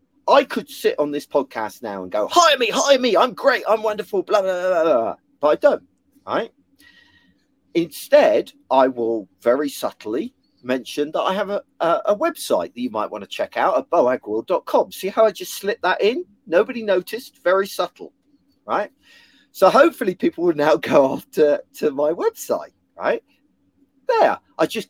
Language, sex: English, male